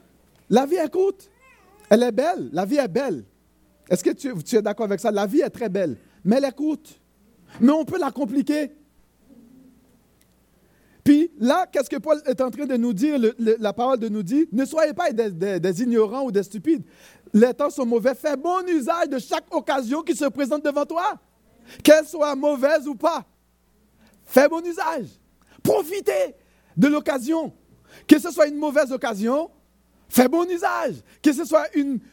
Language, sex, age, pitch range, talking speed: French, male, 50-69, 225-310 Hz, 185 wpm